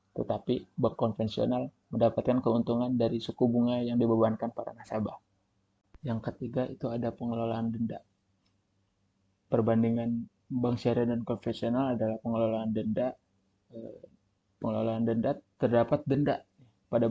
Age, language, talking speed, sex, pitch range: 20-39, English, 110 wpm, male, 115-125 Hz